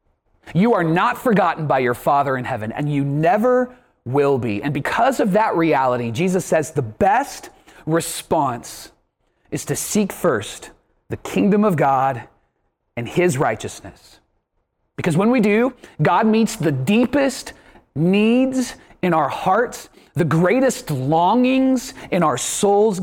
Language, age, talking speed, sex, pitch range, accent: English, 30-49, 140 wpm, male, 165-250 Hz, American